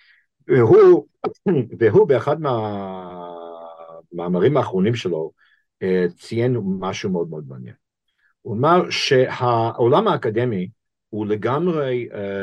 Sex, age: male, 50-69